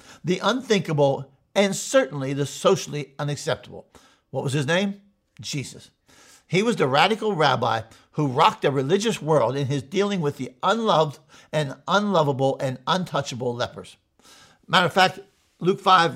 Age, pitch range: 50-69, 140-195 Hz